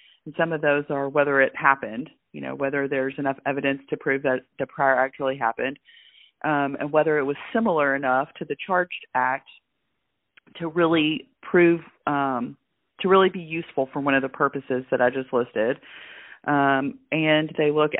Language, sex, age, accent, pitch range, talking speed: English, female, 30-49, American, 135-160 Hz, 180 wpm